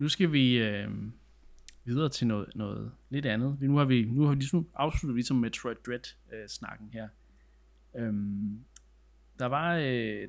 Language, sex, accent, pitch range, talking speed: Danish, male, native, 105-135 Hz, 150 wpm